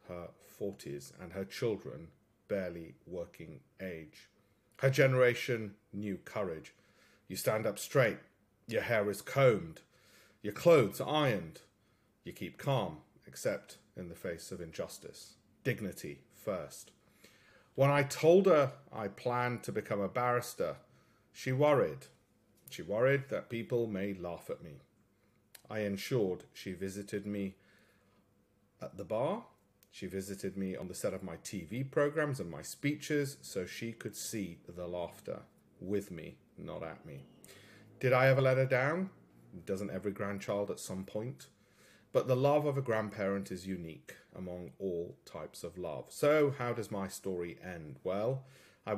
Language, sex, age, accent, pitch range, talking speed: English, male, 40-59, British, 95-125 Hz, 145 wpm